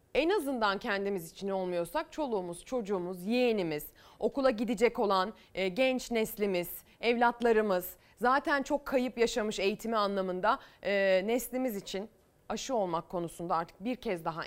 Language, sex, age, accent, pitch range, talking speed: Turkish, female, 30-49, native, 185-245 Hz, 120 wpm